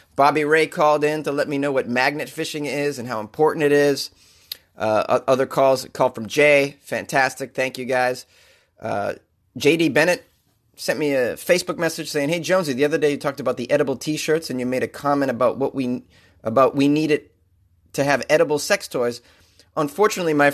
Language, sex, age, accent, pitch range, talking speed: English, male, 30-49, American, 115-155 Hz, 195 wpm